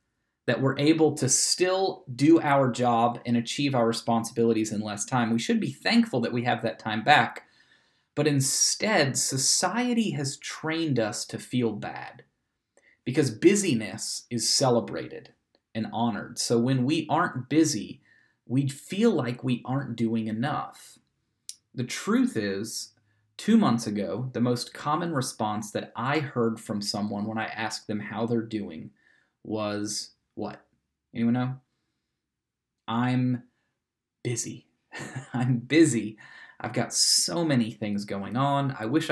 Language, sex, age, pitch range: English, male, 30-49, 115-145 Hz